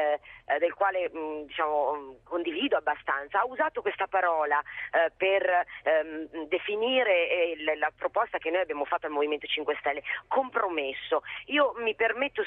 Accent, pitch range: native, 165-250 Hz